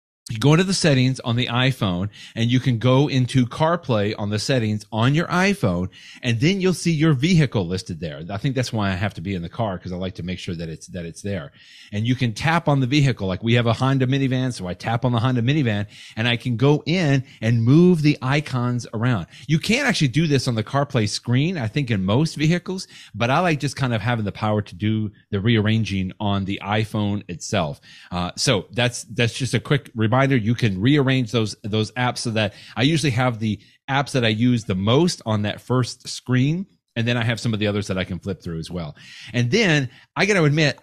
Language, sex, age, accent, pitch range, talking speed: English, male, 30-49, American, 110-145 Hz, 235 wpm